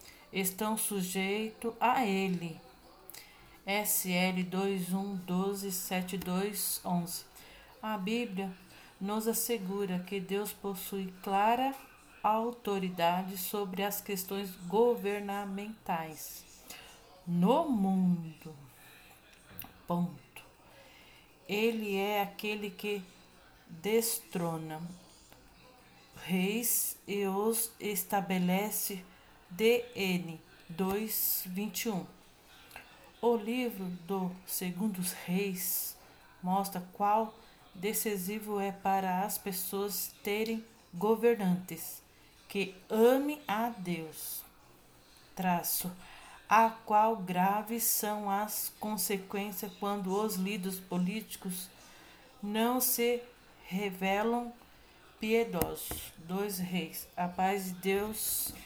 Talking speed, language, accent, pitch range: 75 wpm, Portuguese, Brazilian, 185-215 Hz